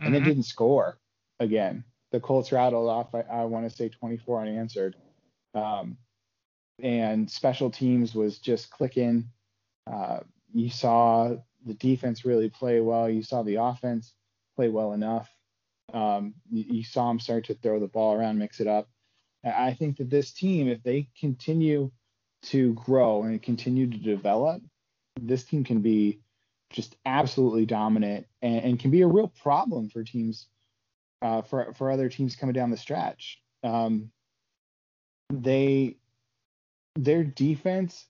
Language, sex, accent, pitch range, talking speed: English, male, American, 105-130 Hz, 150 wpm